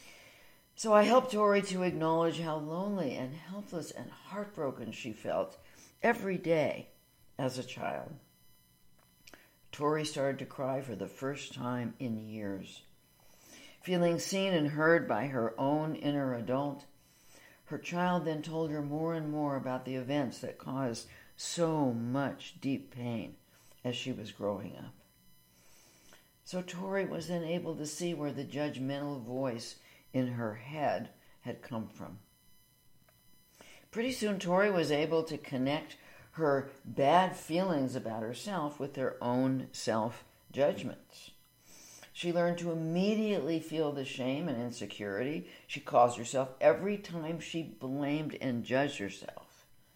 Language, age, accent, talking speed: English, 60-79, American, 135 wpm